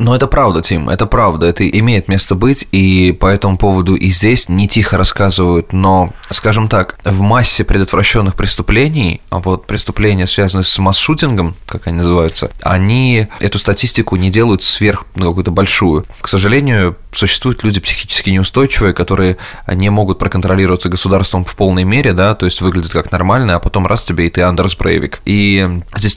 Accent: native